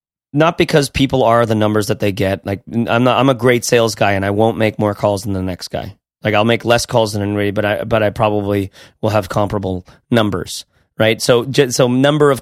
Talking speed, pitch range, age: 230 wpm, 100-125 Hz, 30-49